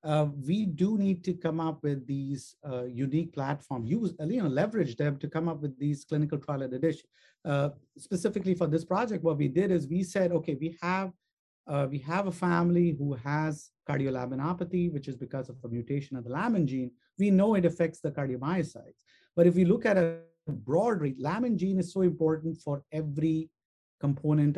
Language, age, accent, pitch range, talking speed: English, 50-69, Indian, 145-185 Hz, 195 wpm